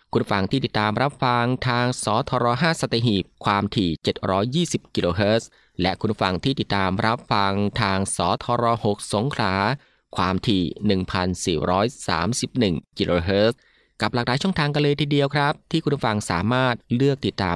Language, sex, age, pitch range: Thai, male, 20-39, 100-135 Hz